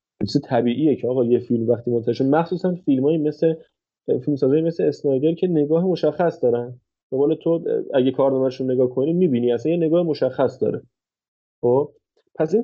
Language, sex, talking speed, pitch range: Persian, male, 155 wpm, 120-150 Hz